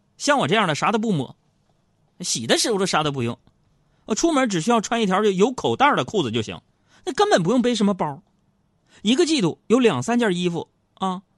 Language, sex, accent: Chinese, male, native